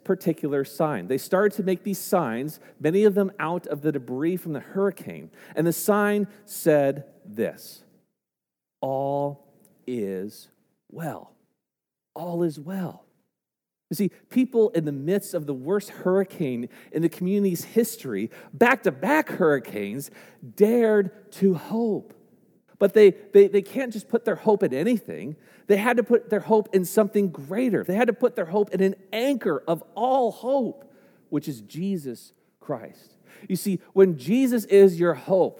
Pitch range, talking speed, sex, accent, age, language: 170-220 Hz, 155 wpm, male, American, 40-59, English